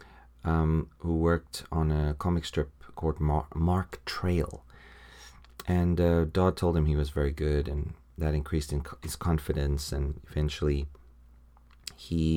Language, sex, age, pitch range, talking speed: English, male, 30-49, 70-85 Hz, 130 wpm